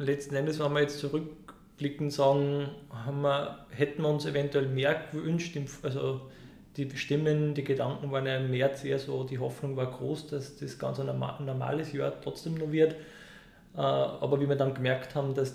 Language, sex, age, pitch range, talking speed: German, male, 20-39, 135-145 Hz, 170 wpm